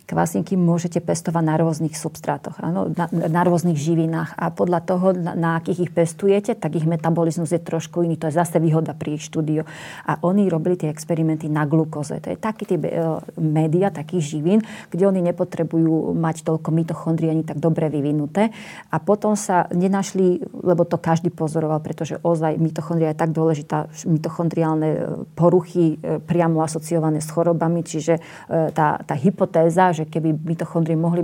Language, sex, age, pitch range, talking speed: Slovak, female, 30-49, 160-175 Hz, 165 wpm